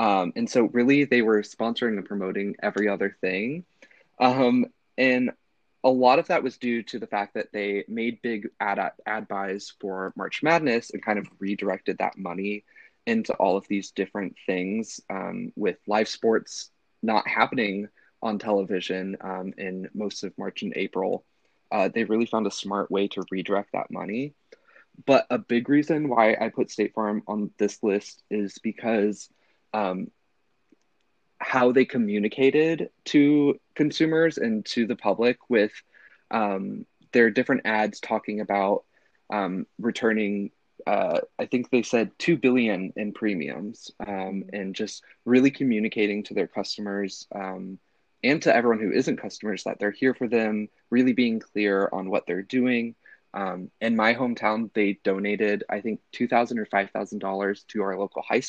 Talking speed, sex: 160 wpm, male